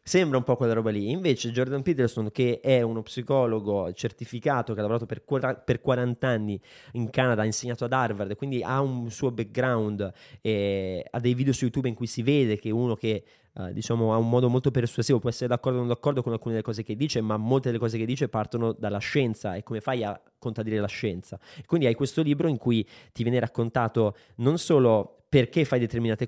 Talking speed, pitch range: 210 wpm, 110-130 Hz